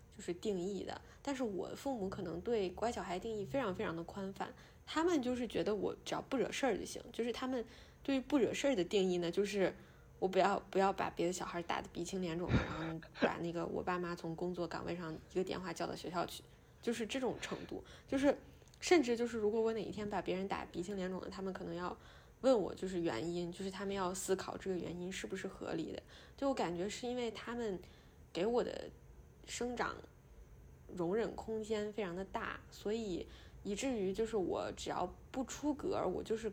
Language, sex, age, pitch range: Chinese, female, 20-39, 180-230 Hz